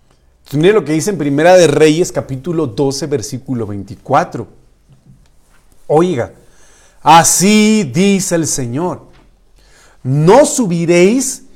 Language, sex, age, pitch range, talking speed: Spanish, male, 40-59, 150-210 Hz, 100 wpm